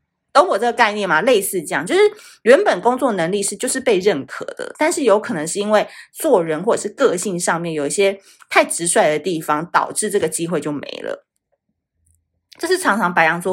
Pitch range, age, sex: 175-260 Hz, 30-49, female